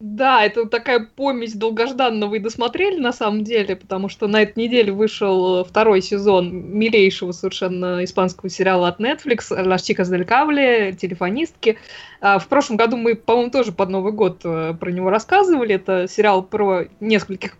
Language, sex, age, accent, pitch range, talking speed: Russian, female, 20-39, native, 195-240 Hz, 140 wpm